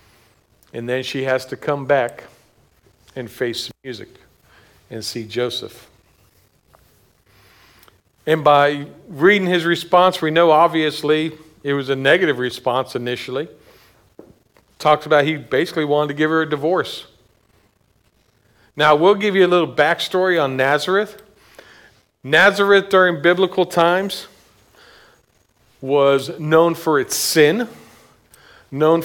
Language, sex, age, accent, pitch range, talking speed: English, male, 50-69, American, 135-180 Hz, 115 wpm